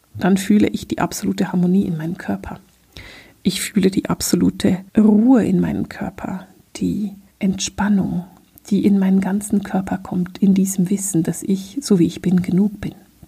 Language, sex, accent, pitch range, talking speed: German, female, German, 185-235 Hz, 165 wpm